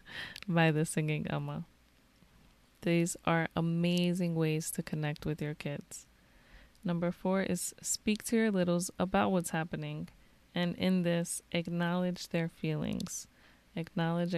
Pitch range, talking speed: 155-180 Hz, 125 wpm